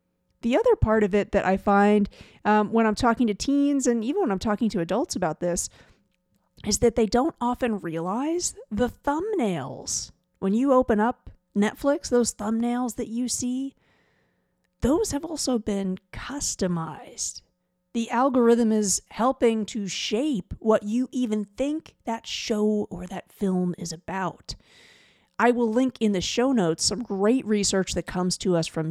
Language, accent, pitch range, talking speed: English, American, 185-250 Hz, 160 wpm